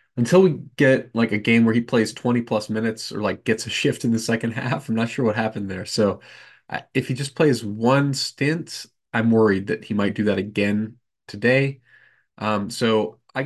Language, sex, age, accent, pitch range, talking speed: English, male, 20-39, American, 100-130 Hz, 210 wpm